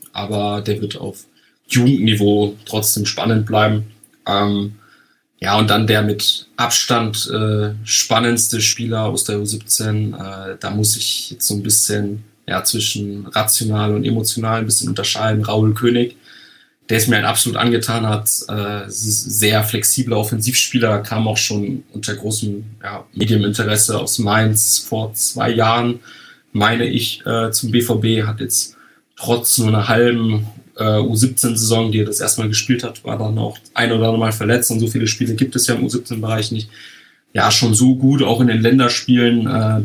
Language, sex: German, male